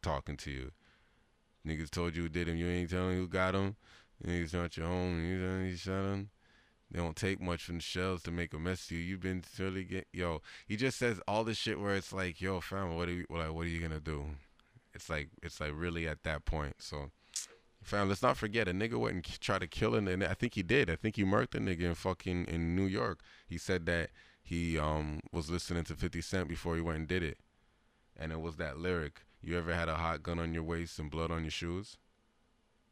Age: 20-39